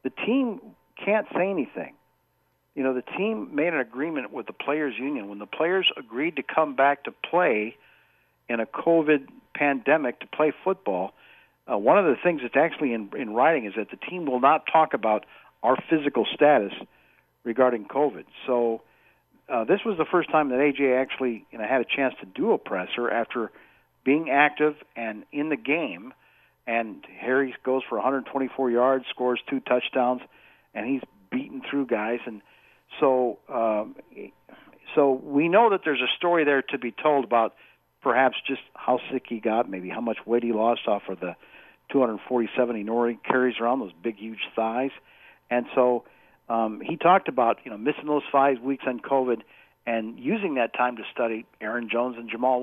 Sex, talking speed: male, 175 wpm